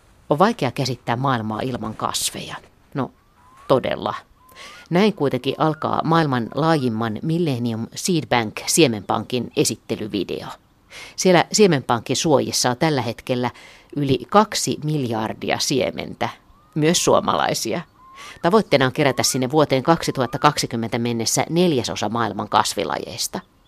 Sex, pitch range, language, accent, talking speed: female, 120-160 Hz, Finnish, native, 100 wpm